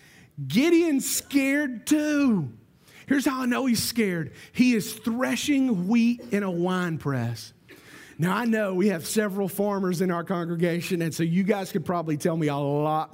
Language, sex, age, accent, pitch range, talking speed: English, male, 40-59, American, 170-225 Hz, 170 wpm